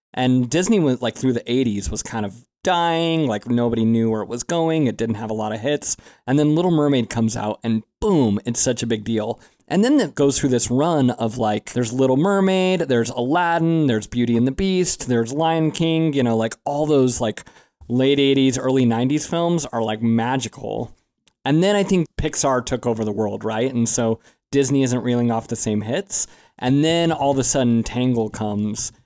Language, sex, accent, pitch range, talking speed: English, male, American, 115-145 Hz, 210 wpm